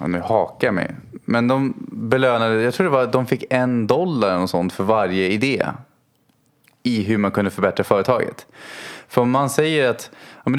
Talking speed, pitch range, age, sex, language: 200 wpm, 105-130 Hz, 20-39, male, Swedish